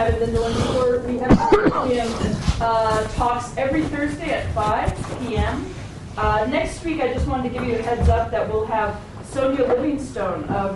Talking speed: 175 wpm